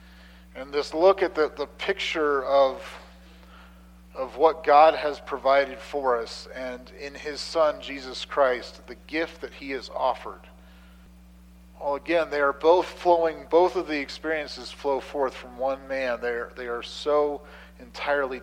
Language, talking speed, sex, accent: English, 155 wpm, male, American